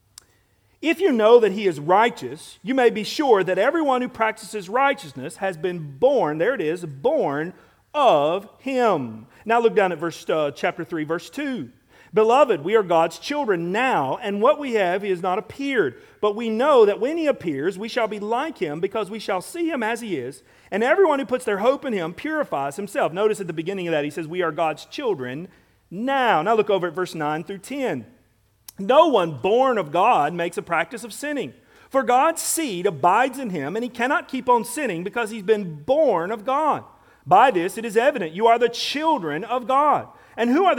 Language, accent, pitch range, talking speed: English, American, 180-275 Hz, 210 wpm